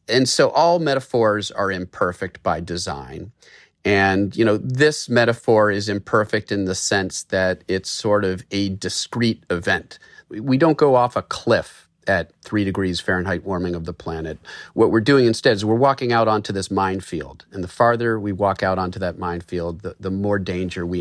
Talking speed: 185 wpm